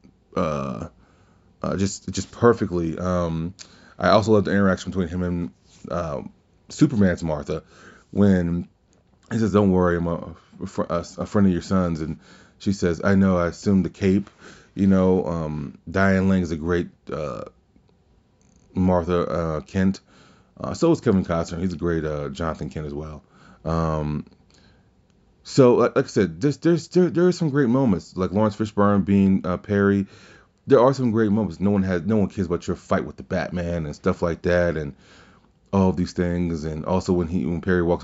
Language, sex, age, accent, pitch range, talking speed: English, male, 30-49, American, 85-100 Hz, 180 wpm